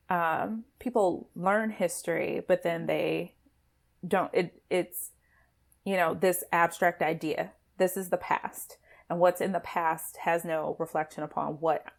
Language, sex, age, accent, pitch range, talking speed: English, female, 20-39, American, 160-180 Hz, 140 wpm